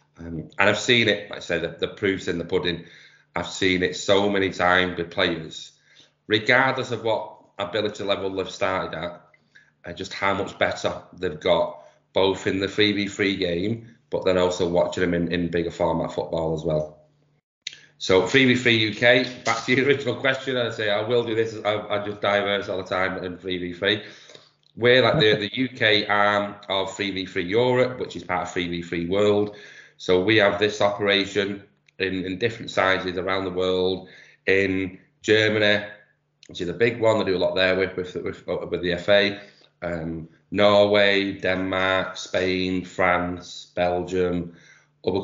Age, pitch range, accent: 30-49, 90-105 Hz, British